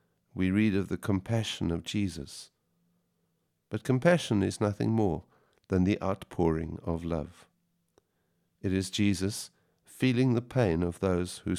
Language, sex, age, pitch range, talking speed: English, male, 50-69, 85-105 Hz, 135 wpm